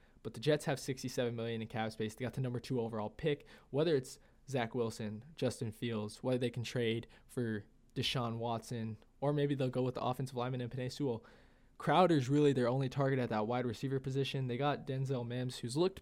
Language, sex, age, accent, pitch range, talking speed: English, male, 20-39, American, 120-135 Hz, 210 wpm